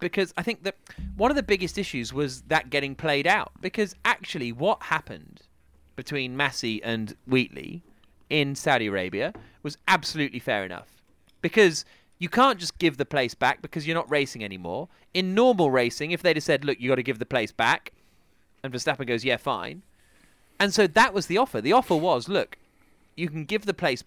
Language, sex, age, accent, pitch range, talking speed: English, male, 30-49, British, 125-175 Hz, 190 wpm